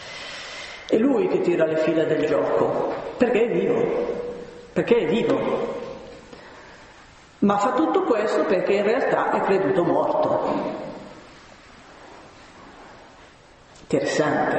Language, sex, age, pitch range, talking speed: Italian, female, 50-69, 165-260 Hz, 105 wpm